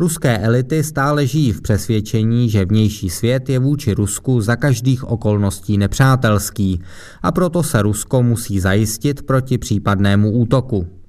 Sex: male